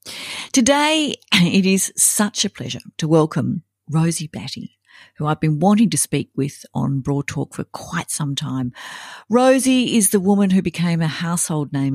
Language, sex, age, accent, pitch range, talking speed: English, female, 50-69, Australian, 150-220 Hz, 165 wpm